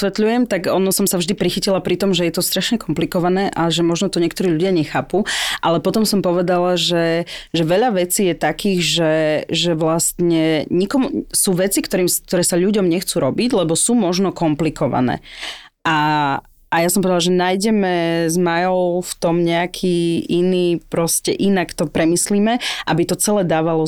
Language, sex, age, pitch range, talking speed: Slovak, female, 30-49, 160-180 Hz, 170 wpm